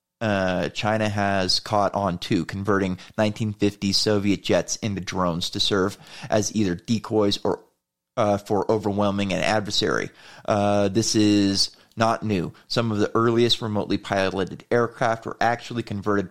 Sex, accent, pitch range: male, American, 100-120 Hz